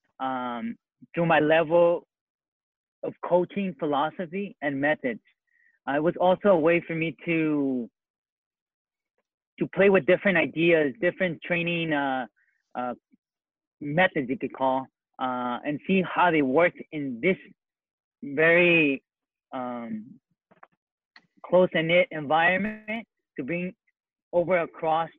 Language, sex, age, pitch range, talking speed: English, male, 30-49, 140-185 Hz, 110 wpm